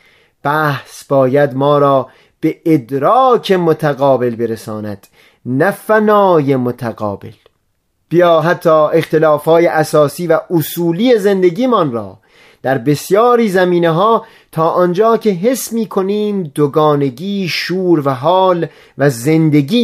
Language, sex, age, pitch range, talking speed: Persian, male, 30-49, 140-195 Hz, 105 wpm